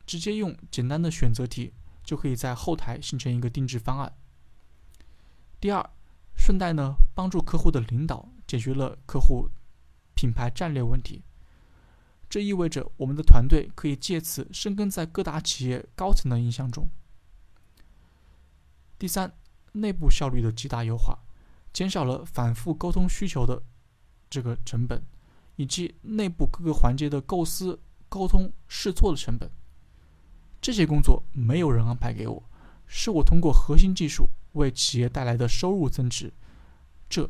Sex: male